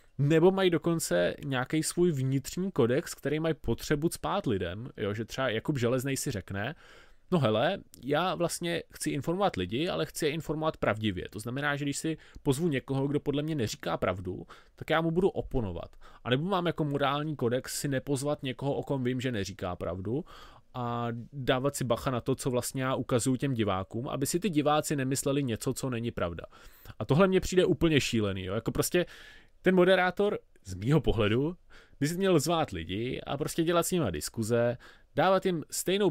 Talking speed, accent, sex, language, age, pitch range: 185 wpm, native, male, Czech, 20-39, 115-155 Hz